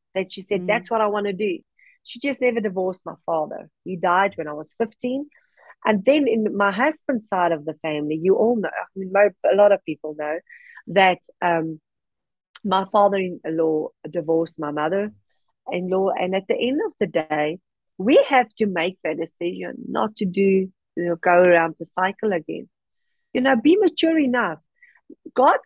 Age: 40-59